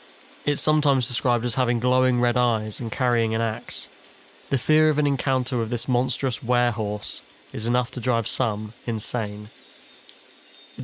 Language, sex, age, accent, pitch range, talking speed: English, male, 20-39, British, 115-135 Hz, 155 wpm